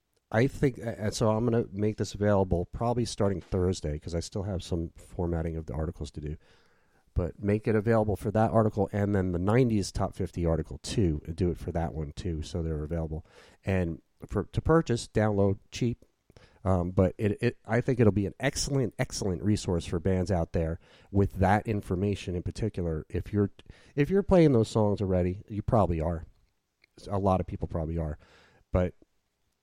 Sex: male